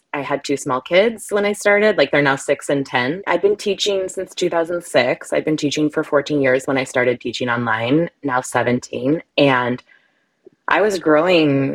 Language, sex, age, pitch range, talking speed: English, female, 20-39, 130-160 Hz, 190 wpm